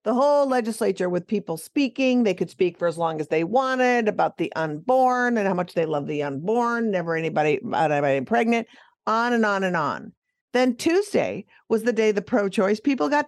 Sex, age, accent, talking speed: female, 50-69, American, 195 wpm